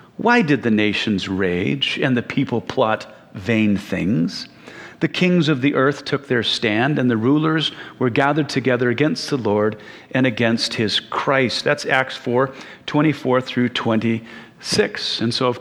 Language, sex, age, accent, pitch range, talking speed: English, male, 40-59, American, 115-145 Hz, 150 wpm